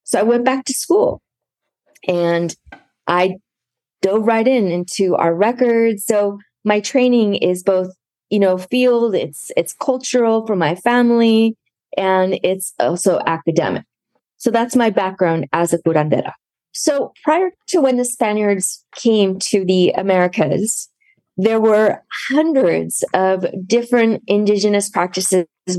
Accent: American